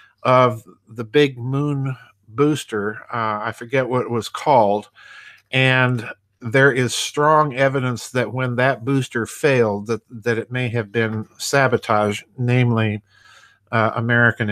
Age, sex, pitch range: 50-69, male, 115-140 Hz